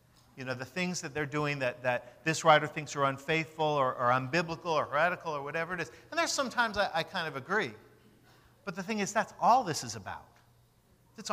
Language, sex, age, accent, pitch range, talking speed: English, male, 50-69, American, 115-170 Hz, 215 wpm